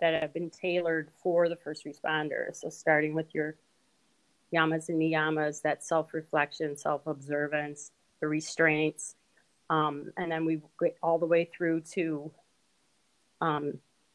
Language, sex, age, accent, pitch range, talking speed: English, female, 30-49, American, 155-180 Hz, 130 wpm